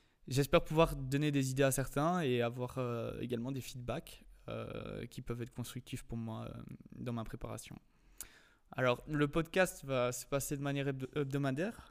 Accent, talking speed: French, 165 wpm